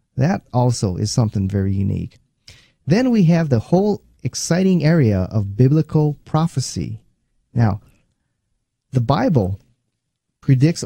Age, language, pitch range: 30-49, English, 110-145 Hz